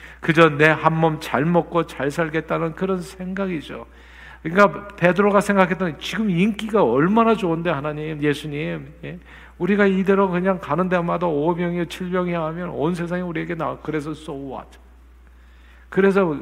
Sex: male